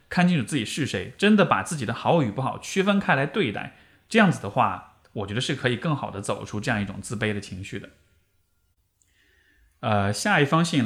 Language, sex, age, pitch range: Chinese, male, 20-39, 105-165 Hz